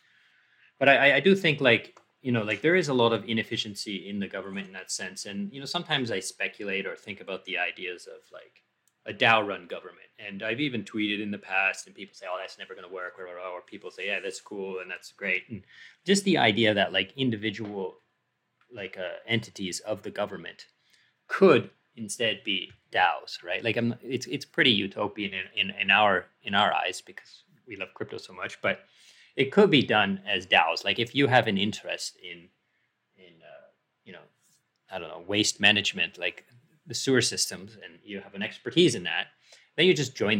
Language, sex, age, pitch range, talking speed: English, male, 30-49, 95-130 Hz, 210 wpm